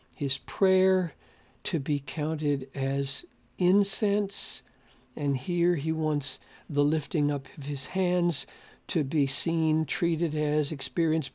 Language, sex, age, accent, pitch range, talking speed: English, male, 60-79, American, 150-190 Hz, 120 wpm